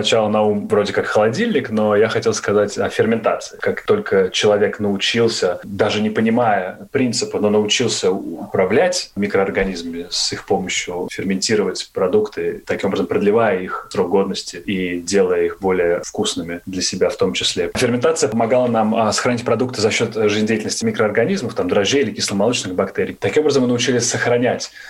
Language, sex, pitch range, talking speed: Russian, male, 95-120 Hz, 155 wpm